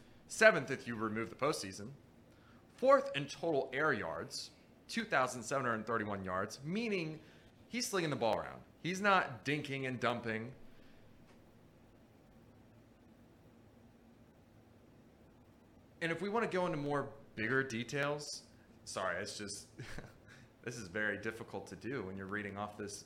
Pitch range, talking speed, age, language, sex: 115-155 Hz, 125 wpm, 30-49, English, male